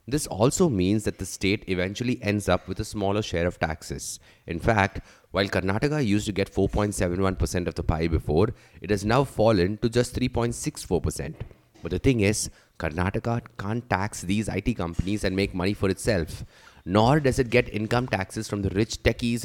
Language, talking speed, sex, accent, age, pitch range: English, 180 wpm, male, Indian, 30-49, 90-115 Hz